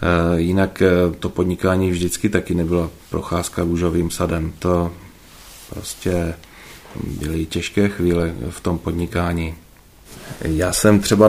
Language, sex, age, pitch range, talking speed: Czech, male, 30-49, 85-95 Hz, 105 wpm